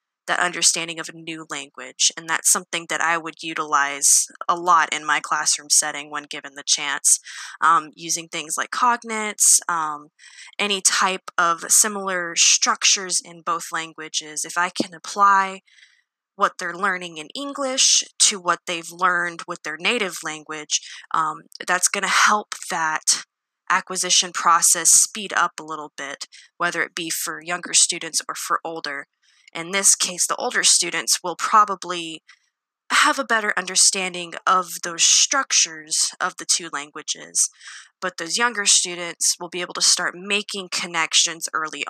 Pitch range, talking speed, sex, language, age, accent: 165-195 Hz, 150 wpm, female, English, 20-39, American